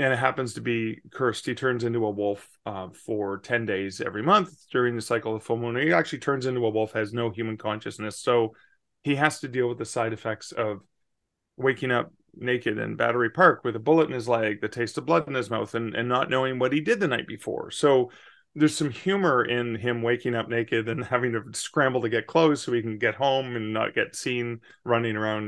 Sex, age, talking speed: male, 30-49, 235 wpm